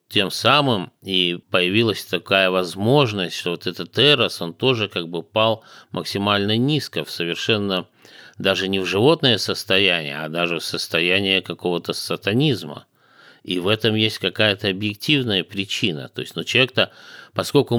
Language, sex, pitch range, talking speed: Russian, male, 95-120 Hz, 140 wpm